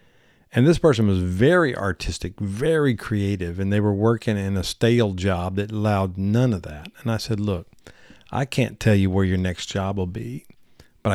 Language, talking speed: English, 195 wpm